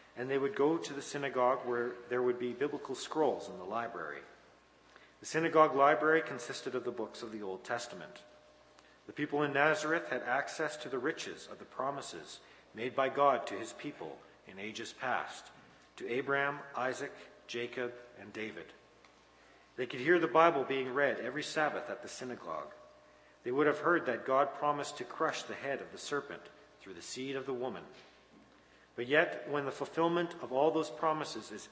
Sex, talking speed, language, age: male, 180 wpm, English, 40-59